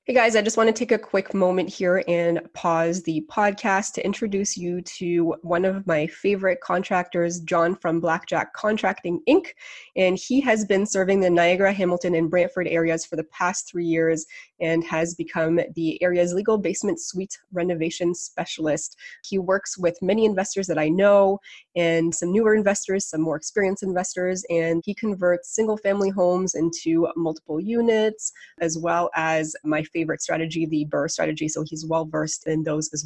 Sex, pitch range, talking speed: female, 165-195 Hz, 170 wpm